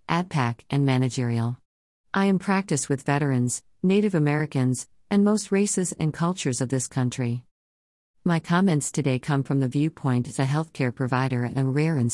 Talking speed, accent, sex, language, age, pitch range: 165 wpm, American, female, English, 40-59, 125-160 Hz